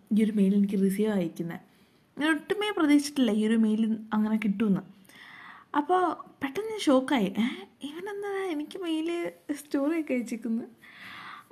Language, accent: Malayalam, native